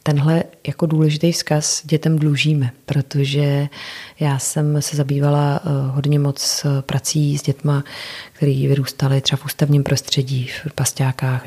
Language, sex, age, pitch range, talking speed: Czech, female, 30-49, 140-155 Hz, 125 wpm